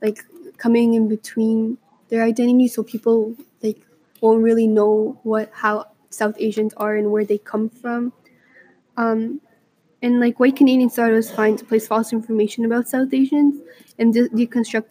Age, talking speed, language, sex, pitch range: 10-29, 165 wpm, English, female, 215-235 Hz